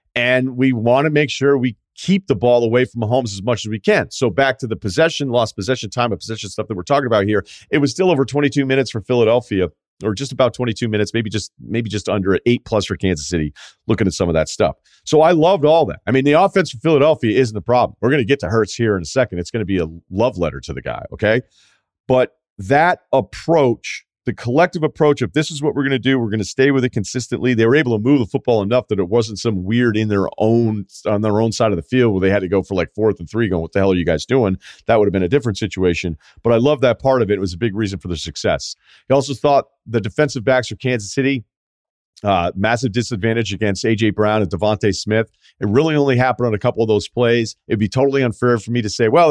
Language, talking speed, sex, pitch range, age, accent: English, 270 wpm, male, 100-130 Hz, 40-59, American